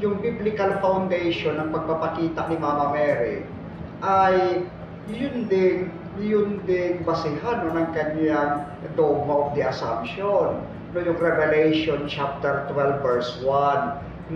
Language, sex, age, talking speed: Filipino, male, 40-59, 115 wpm